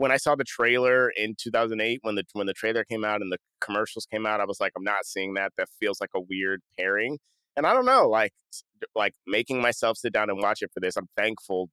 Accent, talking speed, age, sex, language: American, 250 wpm, 30-49, male, English